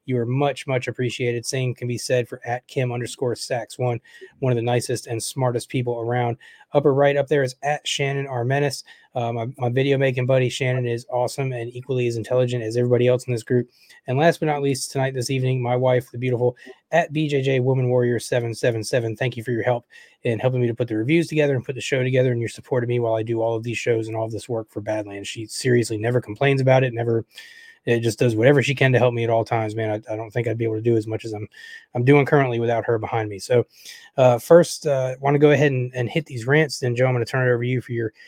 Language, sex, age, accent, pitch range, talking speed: English, male, 20-39, American, 120-140 Hz, 270 wpm